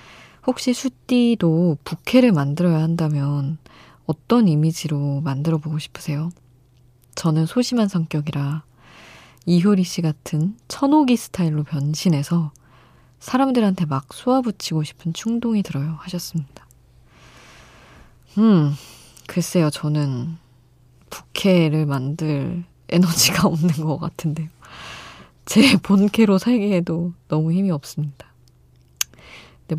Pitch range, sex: 135-190 Hz, female